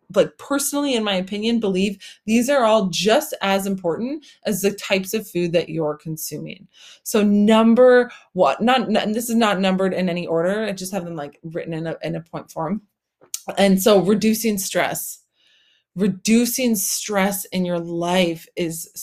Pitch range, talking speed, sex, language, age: 185-235 Hz, 165 wpm, female, English, 20-39